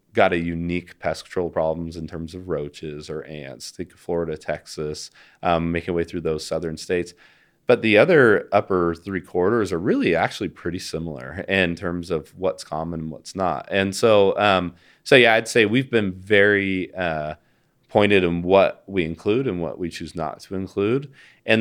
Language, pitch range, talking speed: English, 80-95 Hz, 185 wpm